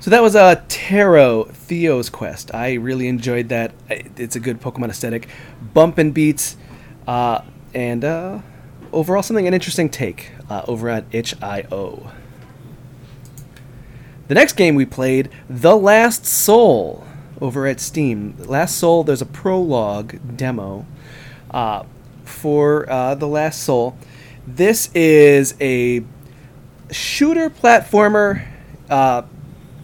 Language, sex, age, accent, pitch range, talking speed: English, male, 30-49, American, 125-155 Hz, 125 wpm